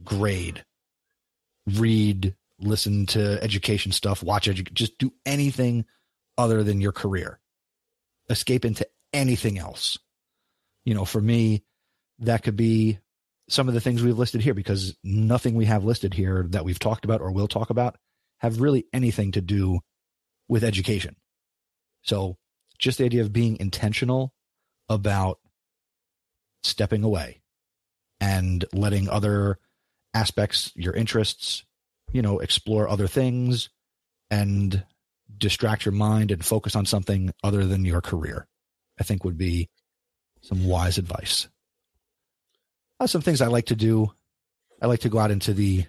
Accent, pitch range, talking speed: American, 95-115 Hz, 140 wpm